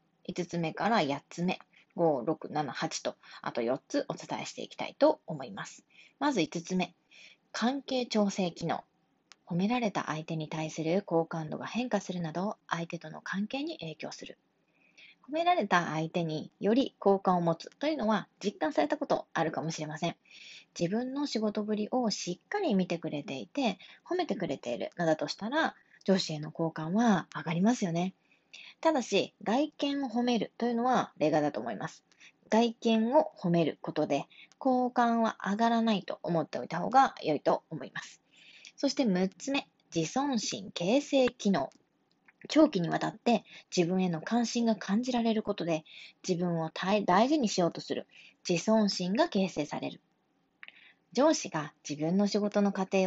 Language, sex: Japanese, female